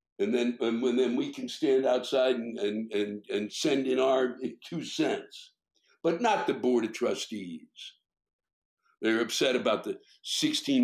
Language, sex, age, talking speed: English, male, 60-79, 155 wpm